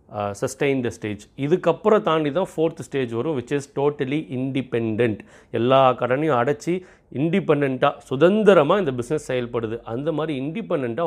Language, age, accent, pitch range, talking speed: Tamil, 30-49, native, 115-155 Hz, 140 wpm